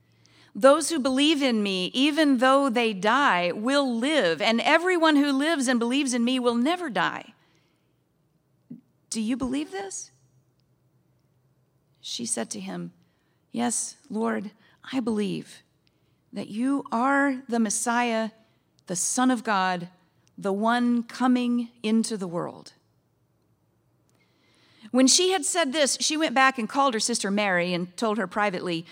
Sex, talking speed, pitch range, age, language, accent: female, 135 wpm, 195-265 Hz, 40-59, English, American